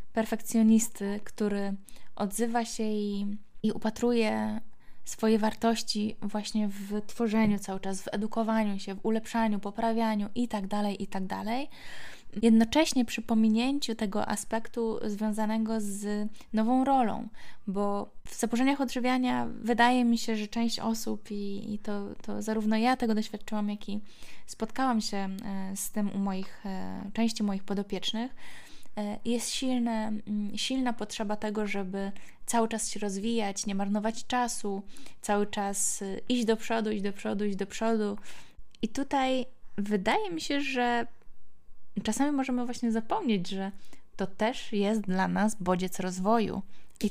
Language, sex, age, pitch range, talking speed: Polish, female, 20-39, 205-235 Hz, 135 wpm